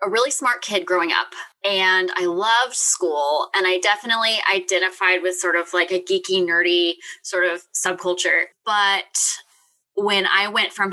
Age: 20-39